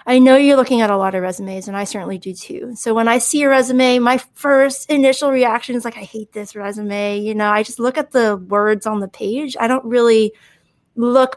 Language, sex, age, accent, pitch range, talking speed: English, female, 30-49, American, 205-250 Hz, 235 wpm